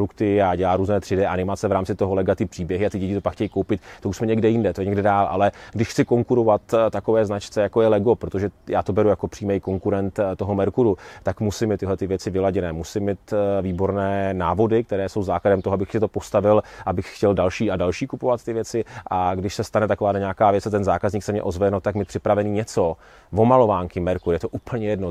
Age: 30-49